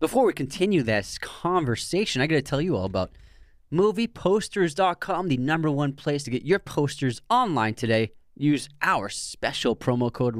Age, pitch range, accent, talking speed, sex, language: 20-39, 105-140 Hz, American, 160 wpm, male, English